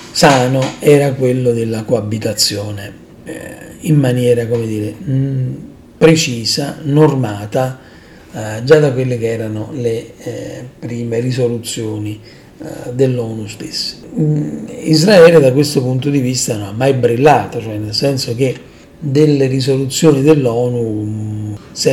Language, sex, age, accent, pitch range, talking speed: Italian, male, 40-59, native, 115-145 Hz, 105 wpm